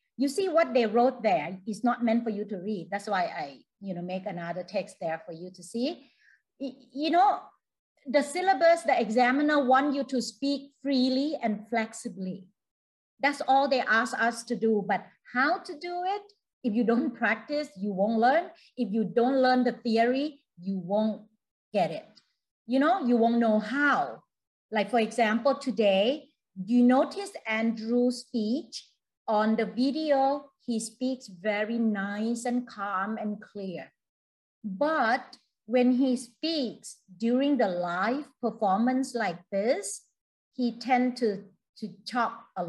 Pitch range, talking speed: 210-265 Hz, 155 wpm